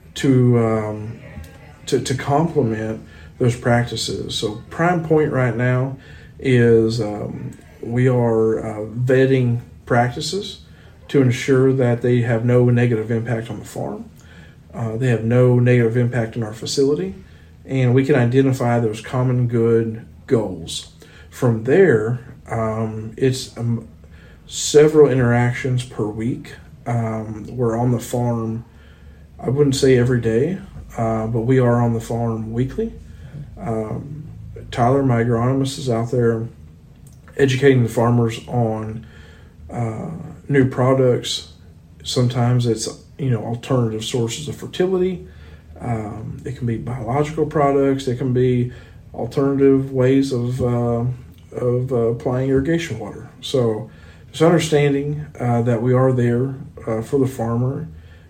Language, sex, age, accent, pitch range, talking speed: Czech, male, 40-59, American, 110-130 Hz, 130 wpm